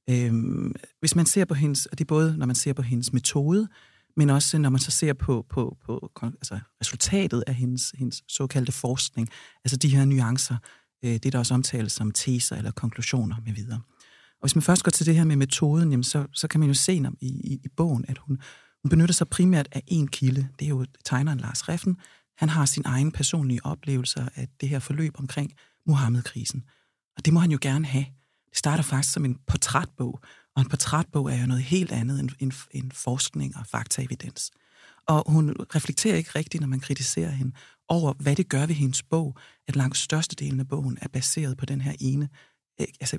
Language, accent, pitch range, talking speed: Danish, native, 130-150 Hz, 210 wpm